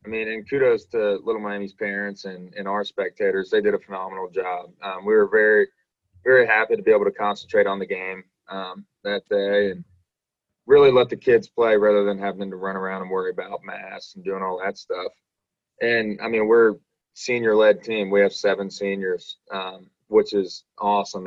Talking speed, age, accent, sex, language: 200 wpm, 20-39, American, male, English